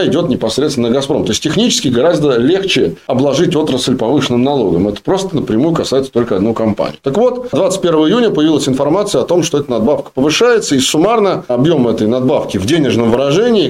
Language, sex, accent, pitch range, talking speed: Russian, male, native, 120-160 Hz, 175 wpm